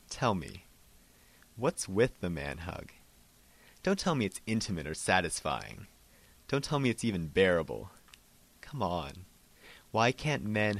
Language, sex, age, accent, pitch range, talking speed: English, male, 30-49, American, 80-115 Hz, 135 wpm